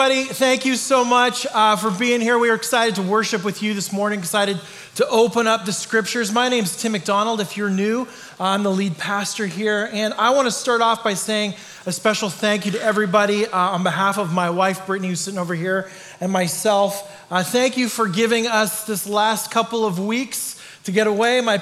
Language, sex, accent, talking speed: English, male, American, 220 wpm